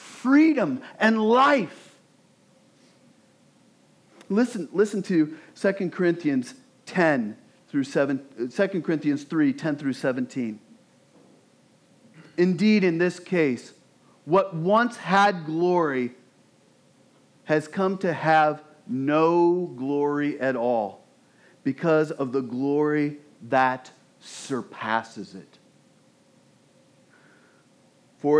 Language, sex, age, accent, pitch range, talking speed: English, male, 40-59, American, 130-170 Hz, 85 wpm